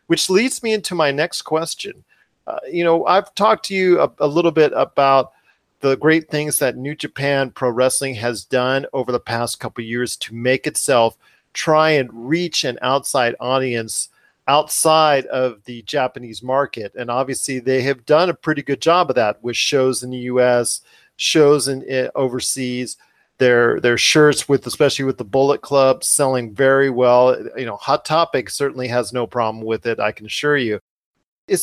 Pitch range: 125-155 Hz